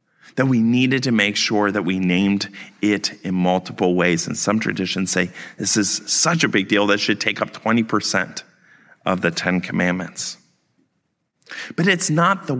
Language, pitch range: English, 105-135 Hz